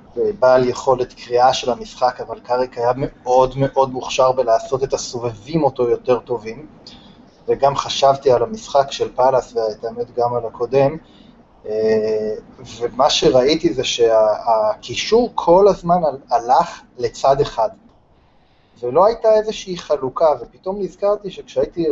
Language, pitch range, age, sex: Hebrew, 130-205 Hz, 30-49, male